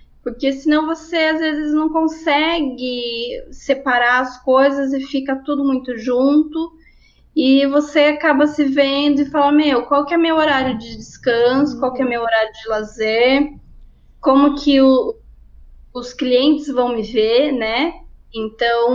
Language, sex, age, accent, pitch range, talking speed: Portuguese, female, 10-29, Brazilian, 230-285 Hz, 150 wpm